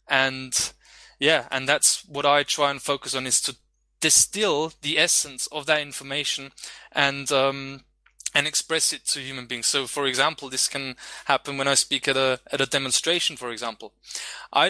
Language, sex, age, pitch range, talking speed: English, male, 20-39, 130-150 Hz, 175 wpm